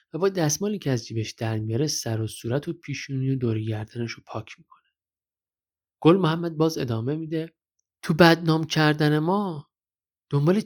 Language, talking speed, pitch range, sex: Persian, 160 wpm, 115-165 Hz, male